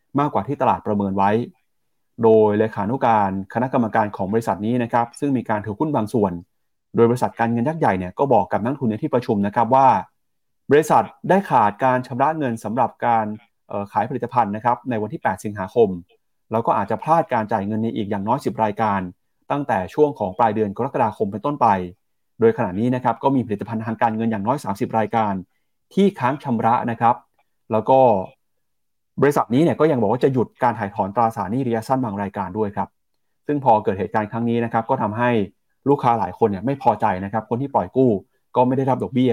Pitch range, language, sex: 105-130 Hz, Thai, male